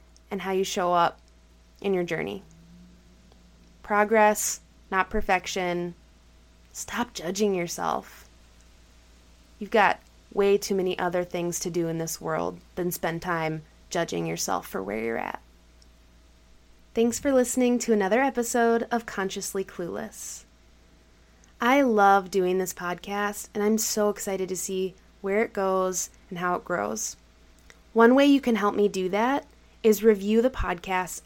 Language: English